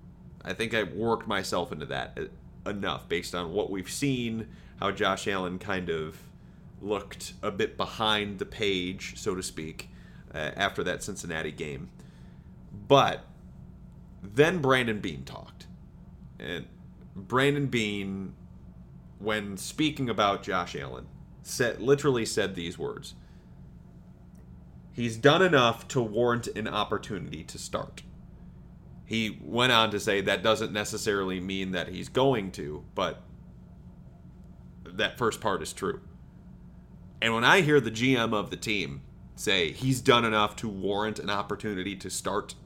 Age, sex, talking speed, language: 30-49, male, 135 wpm, English